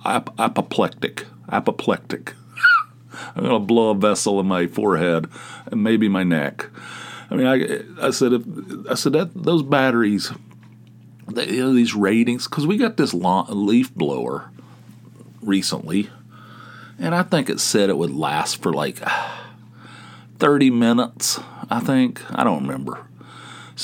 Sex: male